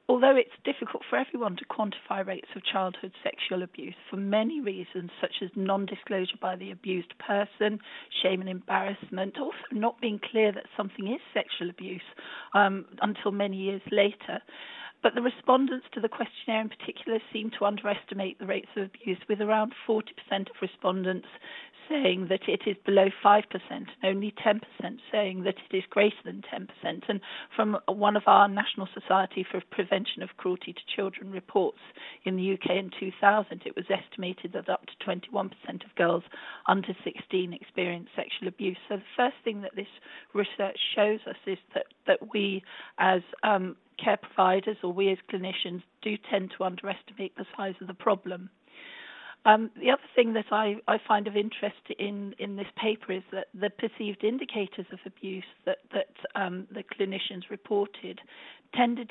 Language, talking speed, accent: English, 170 wpm, British